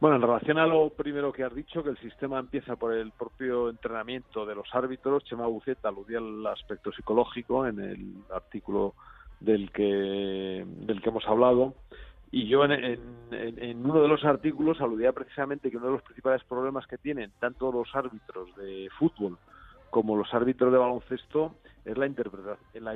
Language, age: Spanish, 50-69